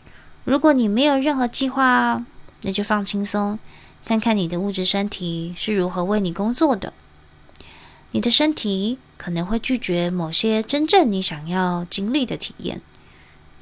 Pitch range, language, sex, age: 165-235 Hz, Chinese, female, 20-39